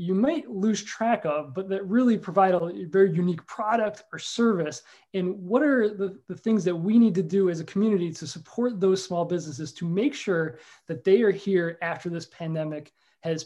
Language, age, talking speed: English, 20-39, 200 wpm